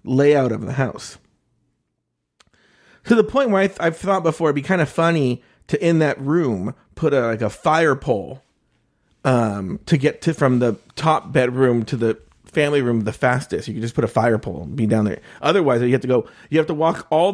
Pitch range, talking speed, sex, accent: 120-165 Hz, 220 wpm, male, American